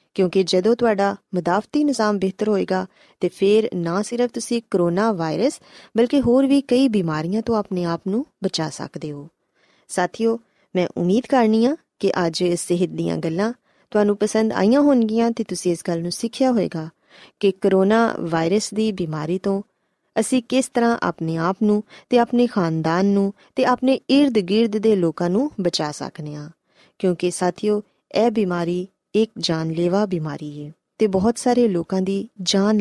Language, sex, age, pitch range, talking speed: Punjabi, female, 20-39, 175-225 Hz, 165 wpm